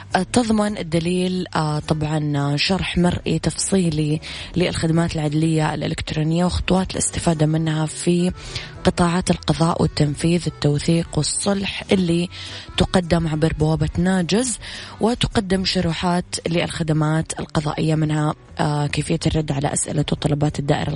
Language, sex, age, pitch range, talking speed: Arabic, female, 20-39, 150-175 Hz, 95 wpm